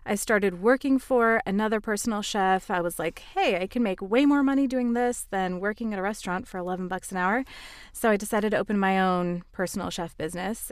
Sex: female